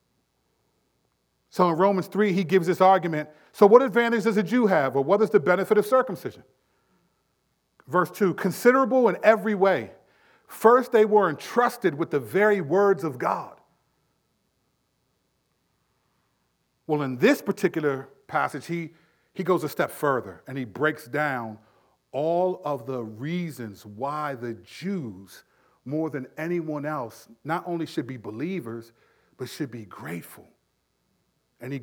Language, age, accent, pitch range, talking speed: English, 40-59, American, 140-200 Hz, 140 wpm